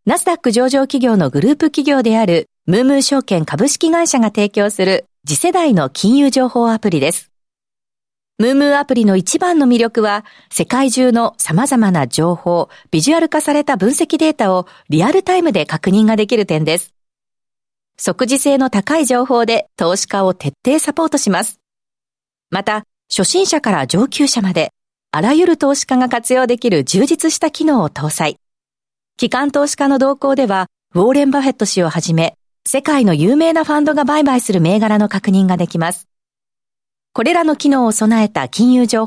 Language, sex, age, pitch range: Japanese, female, 40-59, 195-275 Hz